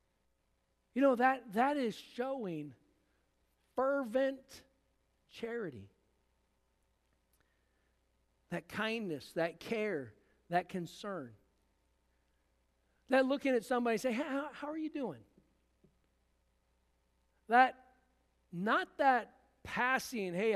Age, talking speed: 50-69, 85 wpm